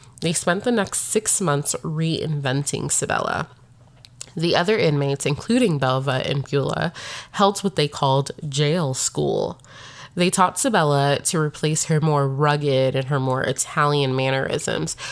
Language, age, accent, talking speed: English, 20-39, American, 135 wpm